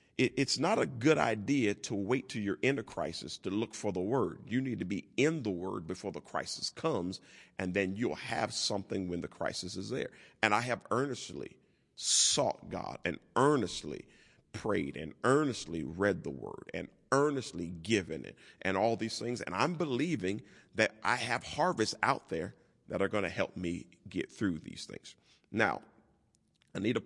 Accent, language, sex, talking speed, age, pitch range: American, English, male, 180 wpm, 40-59, 90-115 Hz